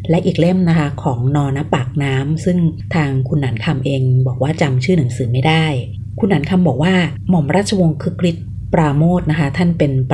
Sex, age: female, 20-39